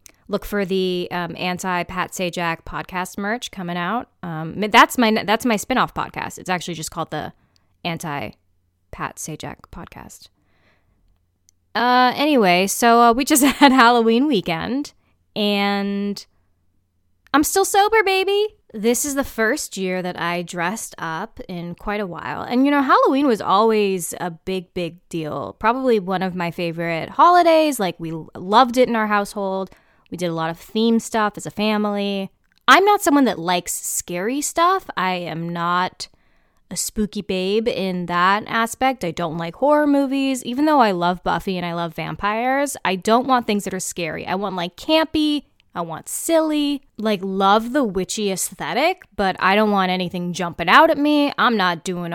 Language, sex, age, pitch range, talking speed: English, female, 20-39, 175-250 Hz, 170 wpm